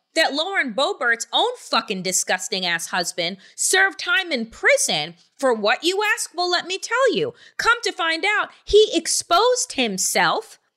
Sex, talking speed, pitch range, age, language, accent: female, 155 wpm, 235-365 Hz, 30-49, English, American